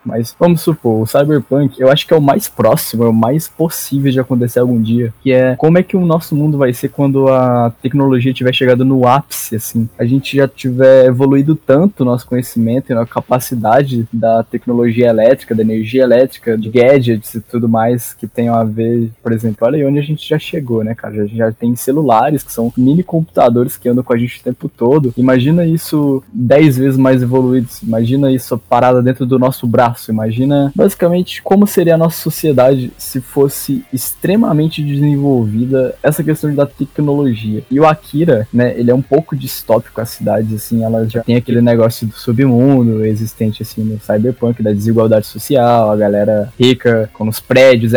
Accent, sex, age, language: Brazilian, male, 10-29, Portuguese